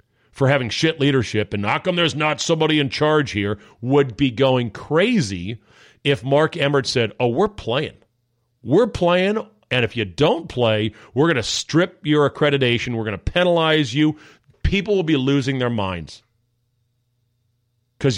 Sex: male